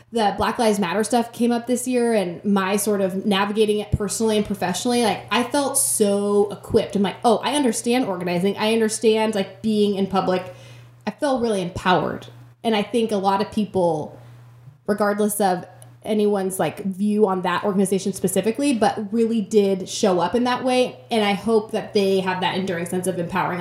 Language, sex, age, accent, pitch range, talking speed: English, female, 20-39, American, 185-225 Hz, 190 wpm